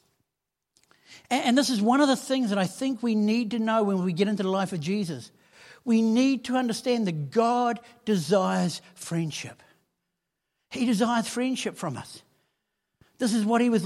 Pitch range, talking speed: 195-245 Hz, 175 wpm